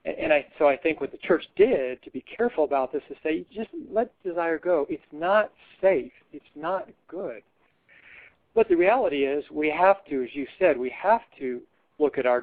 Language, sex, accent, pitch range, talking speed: English, male, American, 130-185 Hz, 200 wpm